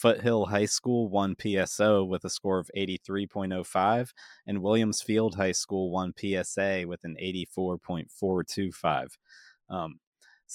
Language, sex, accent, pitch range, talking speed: English, male, American, 90-105 Hz, 115 wpm